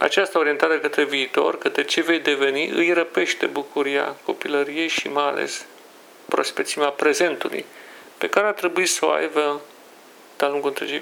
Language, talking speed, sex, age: Romanian, 145 wpm, male, 40-59